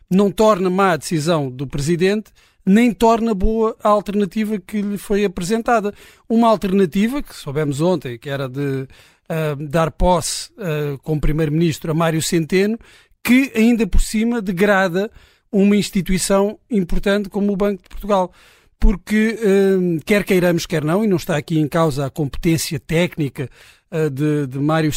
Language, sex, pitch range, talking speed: Portuguese, male, 155-210 Hz, 150 wpm